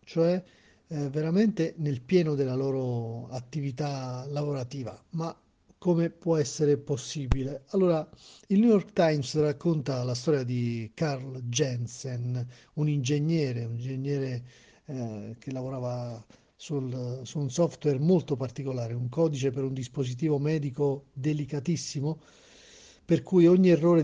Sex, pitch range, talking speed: male, 125-155 Hz, 120 wpm